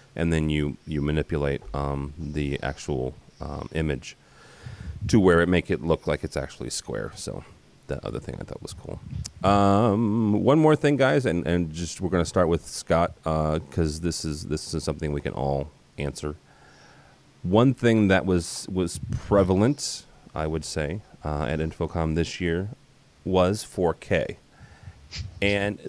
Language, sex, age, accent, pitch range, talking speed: English, male, 30-49, American, 75-95 Hz, 160 wpm